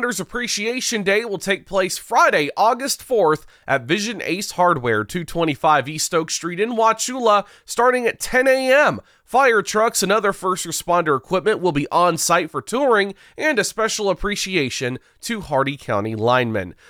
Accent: American